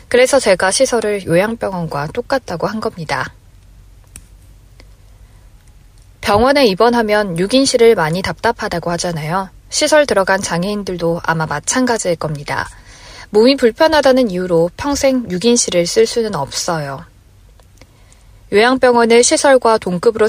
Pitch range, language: 160-230 Hz, Korean